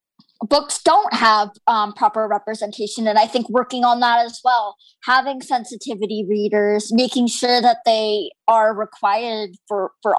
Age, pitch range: 20-39, 220-285 Hz